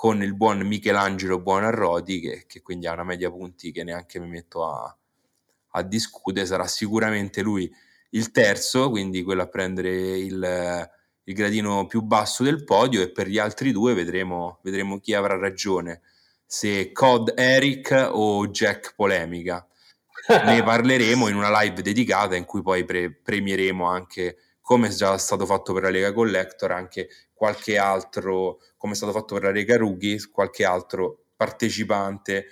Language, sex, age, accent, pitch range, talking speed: Italian, male, 20-39, native, 90-110 Hz, 160 wpm